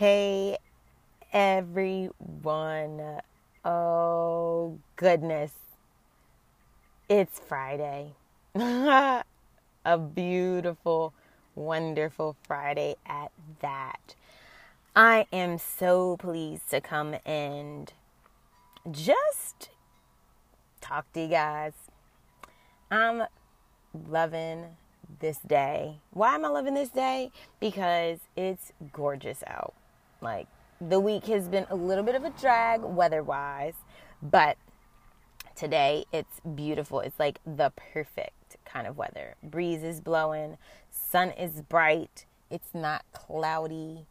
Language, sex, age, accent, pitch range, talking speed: English, female, 20-39, American, 155-195 Hz, 95 wpm